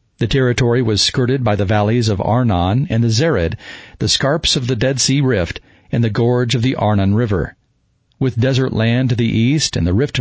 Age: 50-69